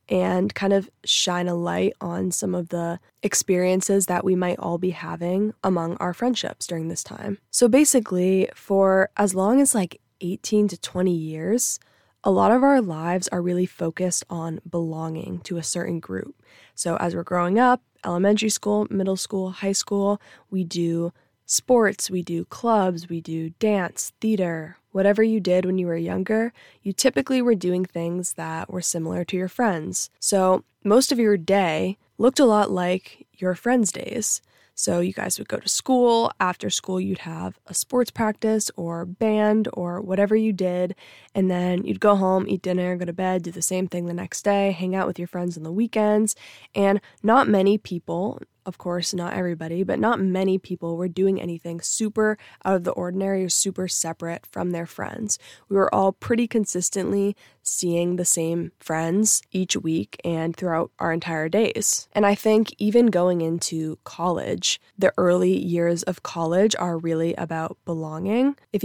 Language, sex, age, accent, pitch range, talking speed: English, female, 20-39, American, 170-205 Hz, 175 wpm